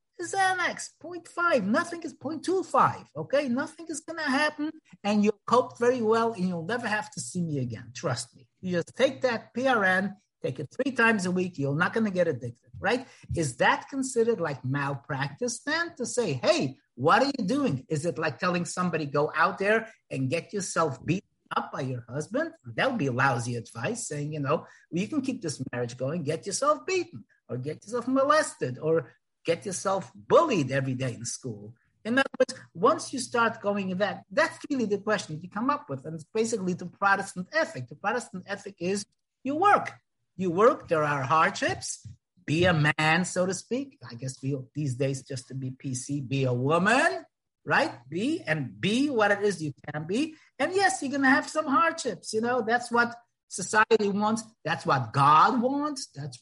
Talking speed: 195 wpm